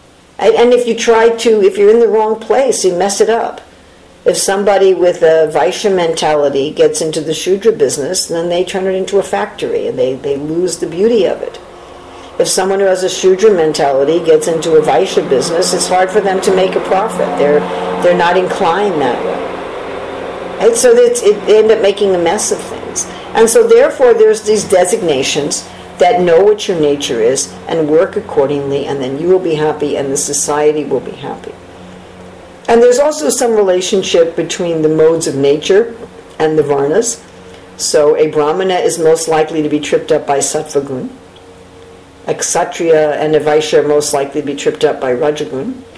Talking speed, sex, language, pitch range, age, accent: 185 wpm, female, English, 150-235 Hz, 60-79, American